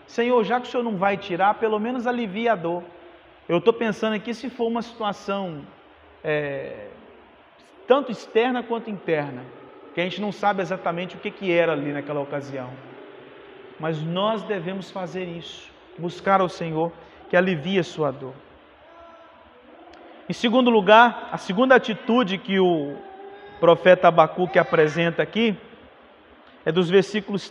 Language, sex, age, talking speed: Portuguese, male, 40-59, 145 wpm